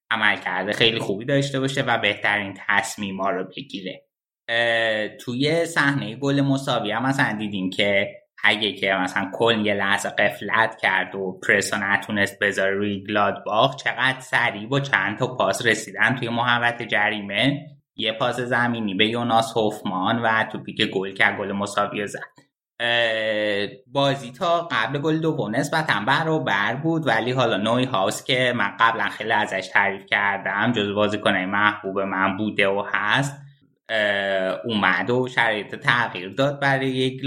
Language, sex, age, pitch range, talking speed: Persian, male, 20-39, 100-135 Hz, 145 wpm